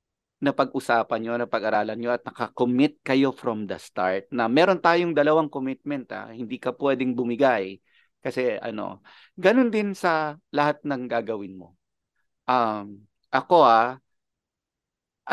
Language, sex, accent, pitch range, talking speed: English, male, Filipino, 120-175 Hz, 135 wpm